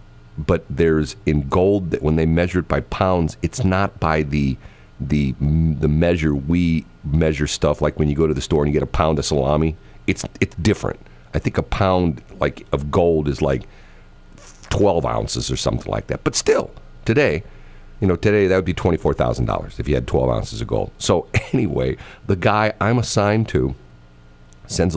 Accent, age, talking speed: American, 50-69, 195 wpm